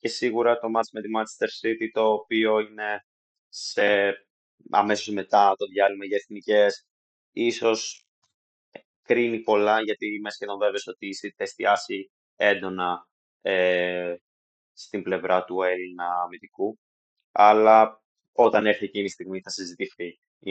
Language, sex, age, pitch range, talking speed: Greek, male, 20-39, 100-130 Hz, 125 wpm